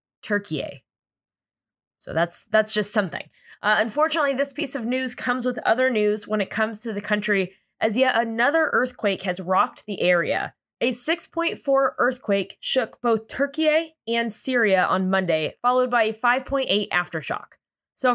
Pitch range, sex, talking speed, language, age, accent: 195-255 Hz, female, 150 wpm, English, 20-39, American